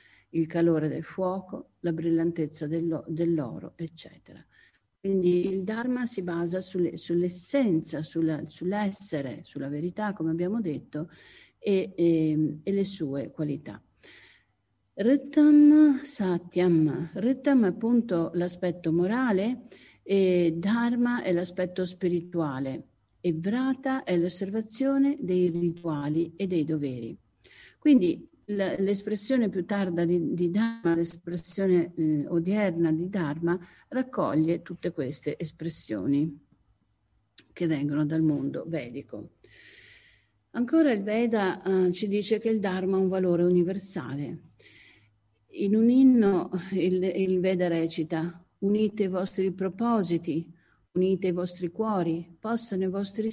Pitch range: 160-205 Hz